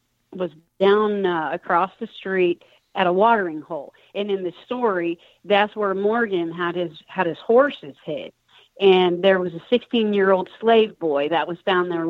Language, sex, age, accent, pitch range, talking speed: English, female, 40-59, American, 170-210 Hz, 180 wpm